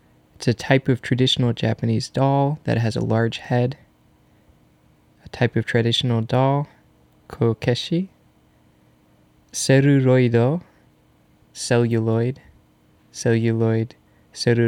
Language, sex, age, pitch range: Japanese, male, 20-39, 110-130 Hz